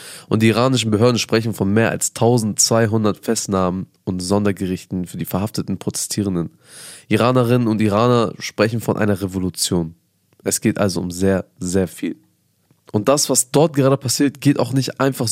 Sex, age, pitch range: male, 20-39, 105-130 Hz